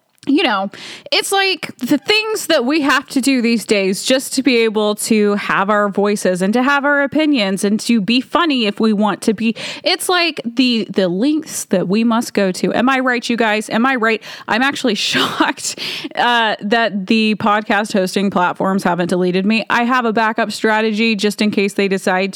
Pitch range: 205-275 Hz